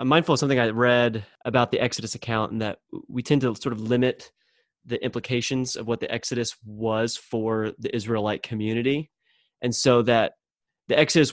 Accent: American